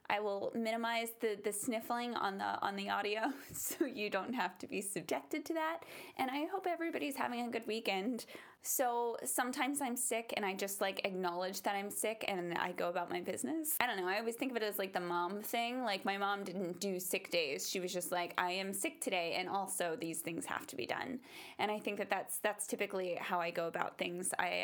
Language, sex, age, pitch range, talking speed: English, female, 10-29, 190-245 Hz, 230 wpm